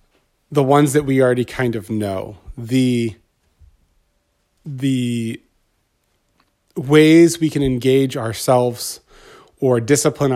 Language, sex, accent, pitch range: English, male, American, 120-140 Hz